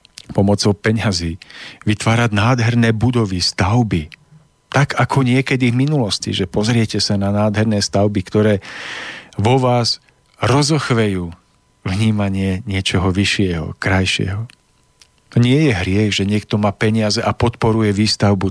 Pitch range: 100-120 Hz